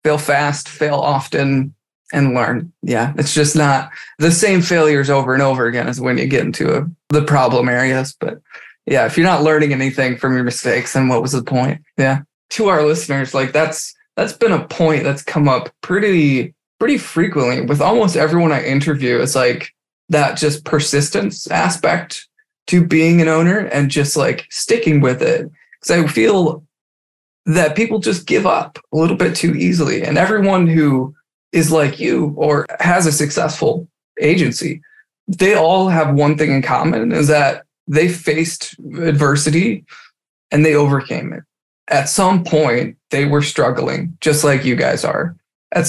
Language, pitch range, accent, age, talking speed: English, 135-160 Hz, American, 20-39, 170 wpm